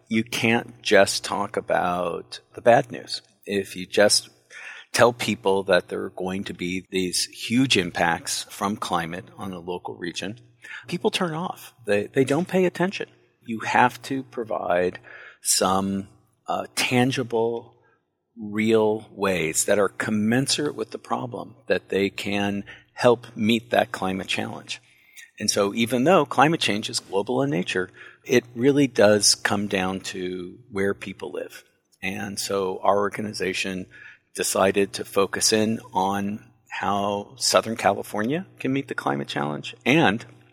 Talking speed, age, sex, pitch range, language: 140 wpm, 50-69, male, 95-120 Hz, English